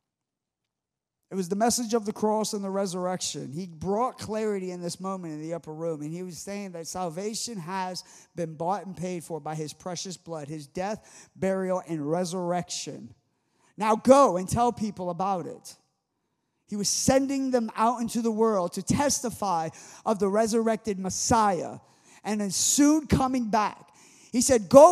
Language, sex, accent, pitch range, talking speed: English, male, American, 180-235 Hz, 170 wpm